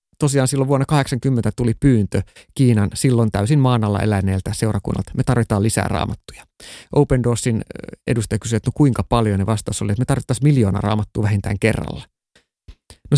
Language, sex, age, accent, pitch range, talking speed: Finnish, male, 30-49, native, 100-130 Hz, 160 wpm